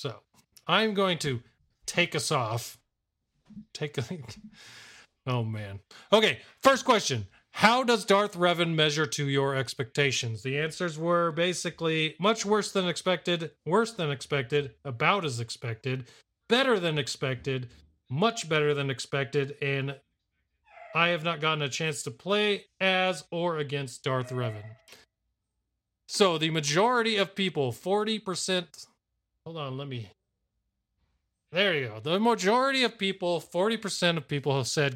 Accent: American